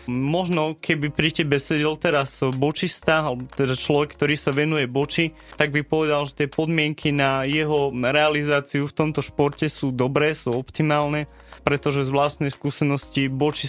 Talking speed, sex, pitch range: 155 wpm, male, 130-145 Hz